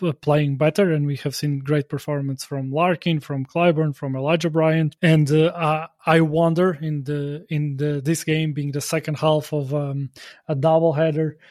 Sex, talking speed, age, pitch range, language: male, 175 wpm, 20-39, 150-165 Hz, English